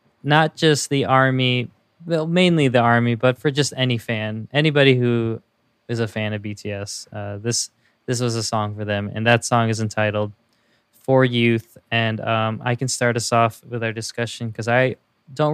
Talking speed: 185 wpm